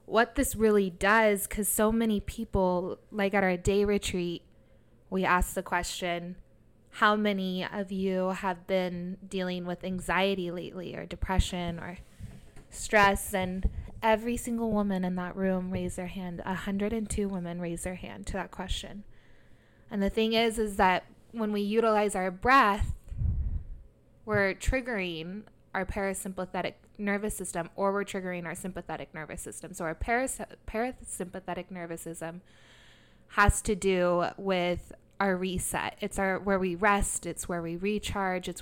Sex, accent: female, American